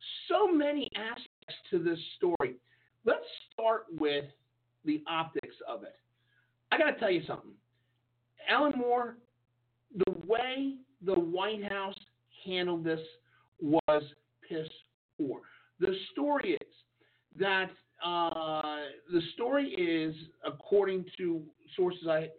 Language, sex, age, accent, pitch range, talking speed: English, male, 50-69, American, 150-205 Hz, 115 wpm